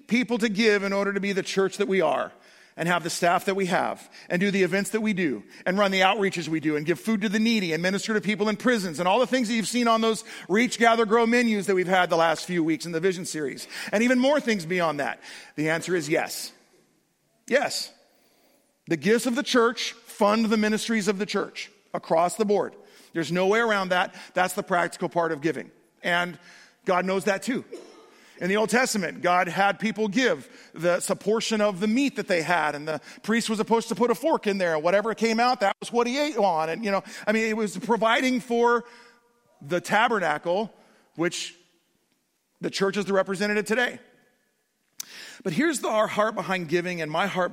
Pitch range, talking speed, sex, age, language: 175-225 Hz, 220 wpm, male, 40-59, English